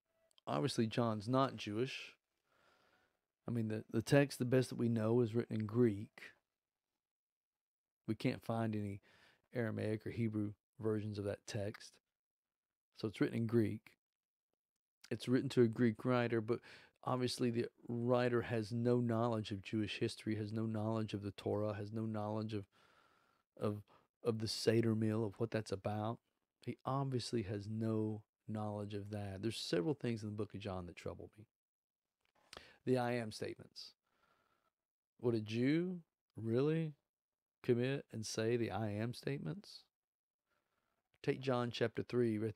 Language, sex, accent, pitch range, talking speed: English, male, American, 110-120 Hz, 150 wpm